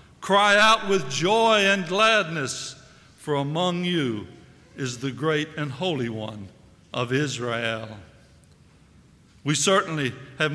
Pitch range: 150-200 Hz